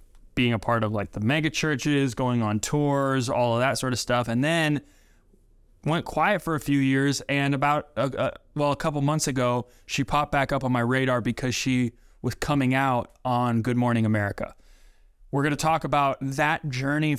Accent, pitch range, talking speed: American, 120-145 Hz, 190 wpm